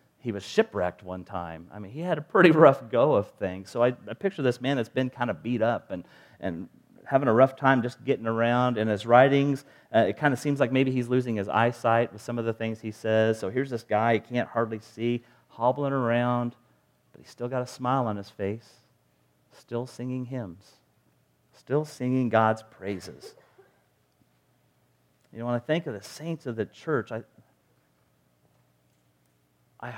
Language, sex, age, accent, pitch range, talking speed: English, male, 40-59, American, 95-125 Hz, 190 wpm